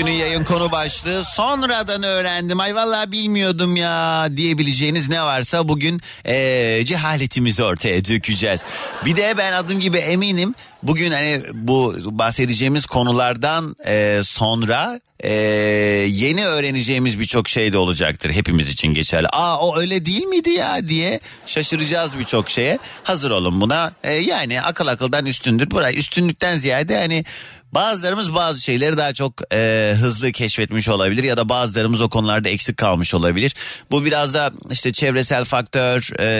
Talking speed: 145 wpm